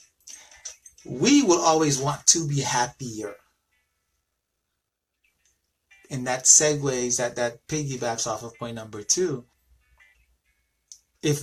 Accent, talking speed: American, 100 wpm